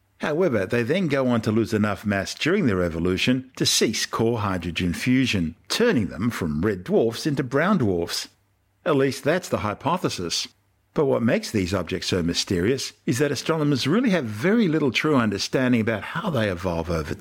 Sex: male